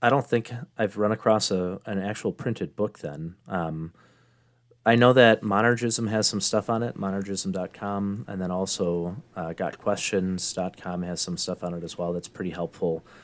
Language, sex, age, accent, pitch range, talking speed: English, male, 30-49, American, 90-115 Hz, 170 wpm